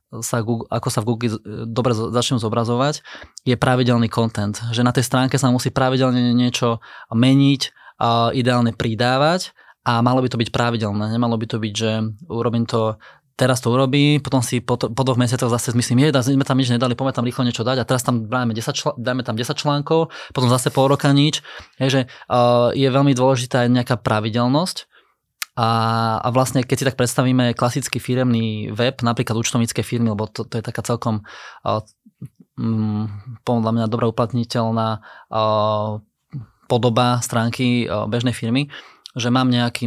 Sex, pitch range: male, 115-130 Hz